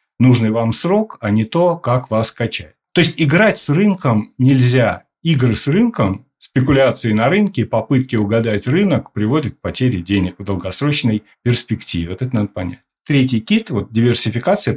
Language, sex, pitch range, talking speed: Russian, male, 105-145 Hz, 155 wpm